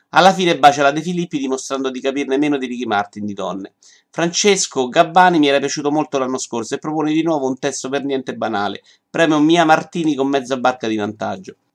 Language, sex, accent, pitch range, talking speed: Italian, male, native, 125-160 Hz, 205 wpm